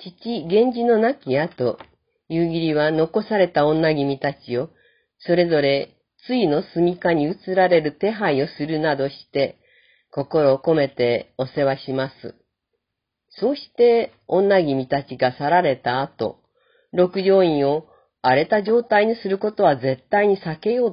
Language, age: Japanese, 40-59